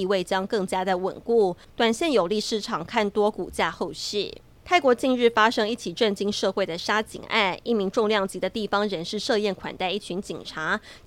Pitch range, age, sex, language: 190-225 Hz, 20-39, female, Chinese